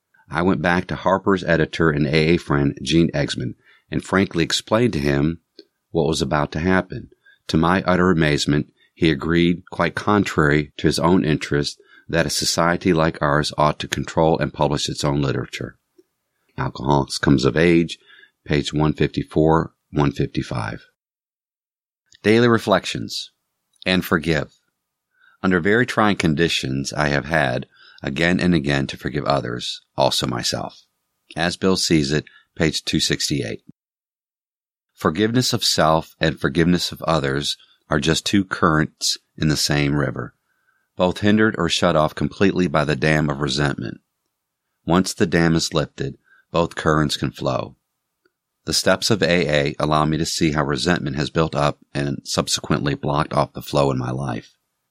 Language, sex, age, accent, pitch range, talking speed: English, male, 50-69, American, 75-90 Hz, 145 wpm